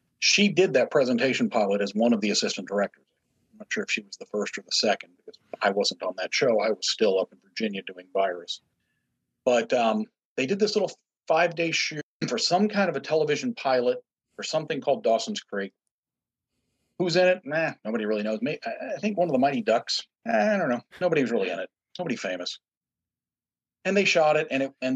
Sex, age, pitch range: male, 50-69, 115-185 Hz